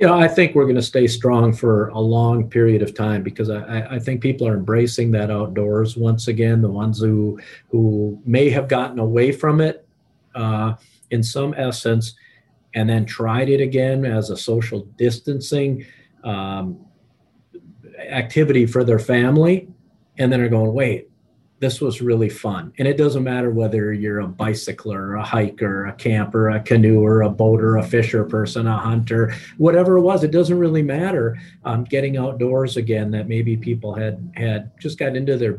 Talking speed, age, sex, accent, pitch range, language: 185 wpm, 40-59, male, American, 110-130 Hz, English